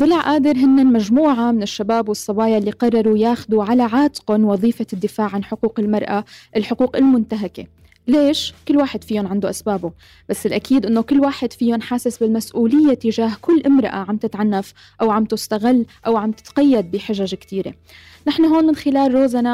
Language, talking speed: Arabic, 155 wpm